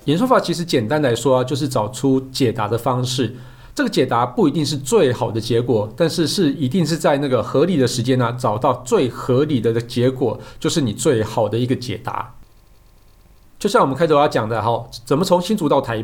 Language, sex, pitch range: Chinese, male, 120-150 Hz